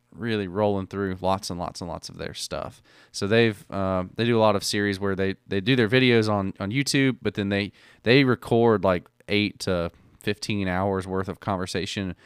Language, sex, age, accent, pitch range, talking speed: English, male, 20-39, American, 95-110 Hz, 205 wpm